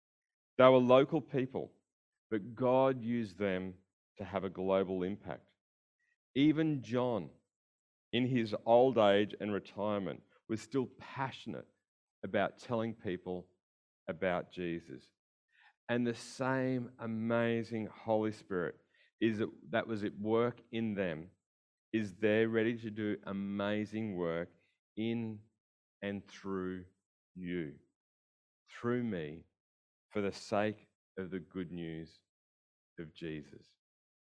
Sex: male